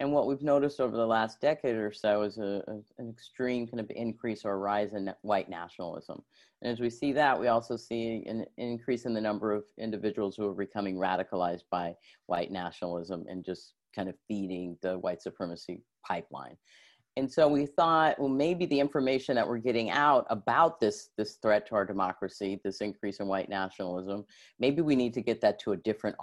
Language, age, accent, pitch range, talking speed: English, 40-59, American, 100-120 Hz, 195 wpm